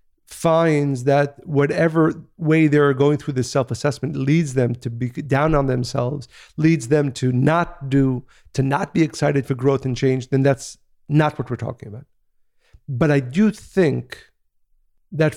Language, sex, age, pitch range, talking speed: English, male, 50-69, 130-155 Hz, 170 wpm